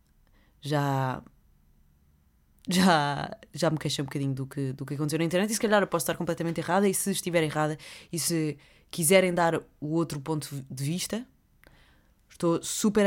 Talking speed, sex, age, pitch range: 170 wpm, female, 20-39, 145-185 Hz